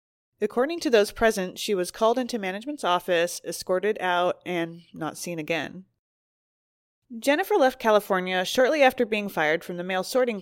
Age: 20-39